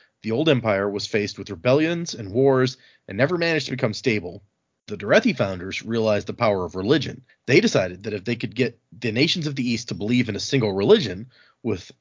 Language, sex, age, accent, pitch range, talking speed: English, male, 30-49, American, 105-130 Hz, 210 wpm